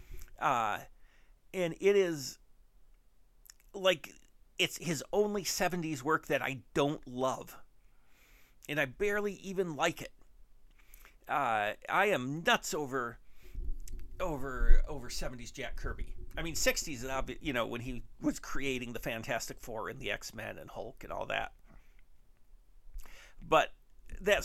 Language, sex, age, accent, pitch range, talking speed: English, male, 50-69, American, 115-160 Hz, 130 wpm